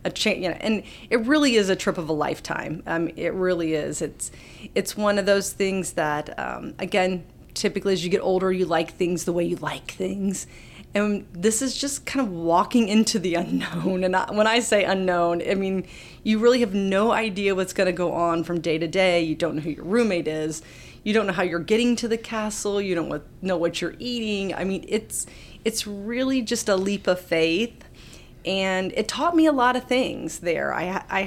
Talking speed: 220 wpm